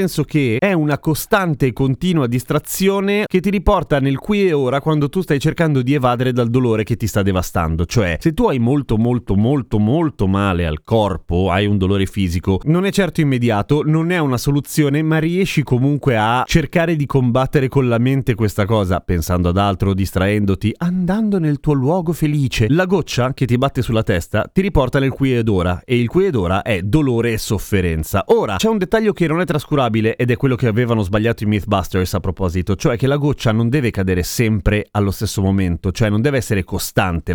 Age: 30-49